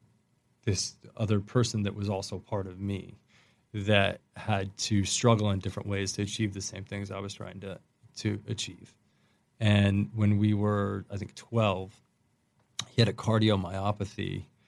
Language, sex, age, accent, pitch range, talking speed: English, male, 20-39, American, 100-115 Hz, 155 wpm